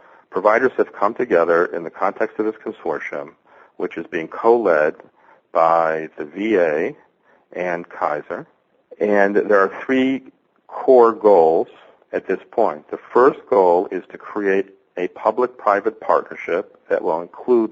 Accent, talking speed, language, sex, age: American, 135 wpm, English, male, 50-69